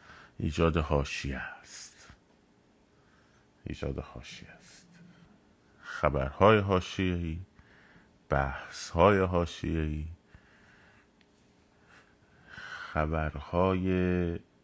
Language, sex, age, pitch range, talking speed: Persian, male, 30-49, 75-95 Hz, 45 wpm